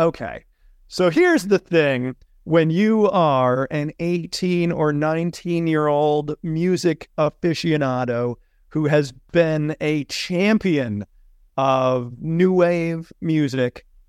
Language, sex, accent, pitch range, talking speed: English, male, American, 145-210 Hz, 100 wpm